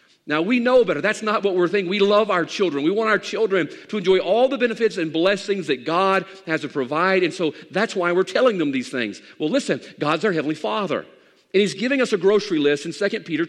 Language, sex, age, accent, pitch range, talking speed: English, male, 50-69, American, 130-210 Hz, 240 wpm